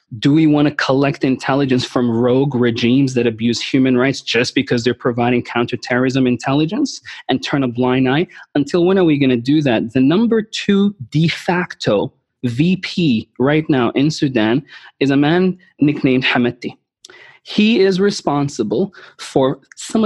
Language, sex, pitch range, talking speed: English, male, 130-175 Hz, 155 wpm